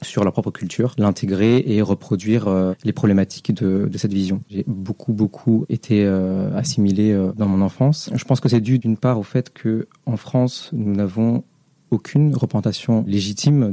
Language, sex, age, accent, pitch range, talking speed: French, male, 30-49, French, 100-120 Hz, 160 wpm